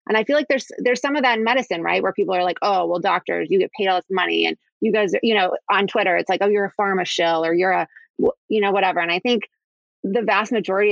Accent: American